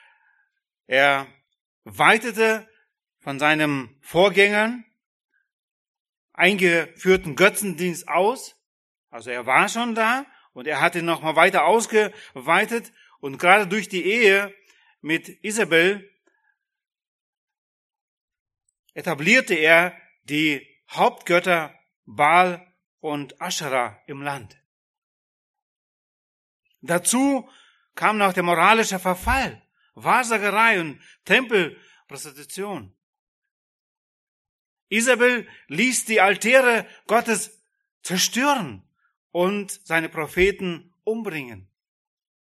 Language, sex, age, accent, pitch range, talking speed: German, male, 30-49, German, 160-230 Hz, 80 wpm